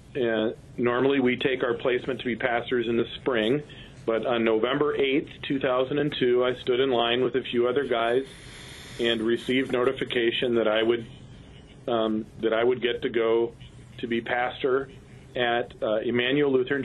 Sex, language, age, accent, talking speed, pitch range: male, English, 40-59, American, 165 wpm, 120-140 Hz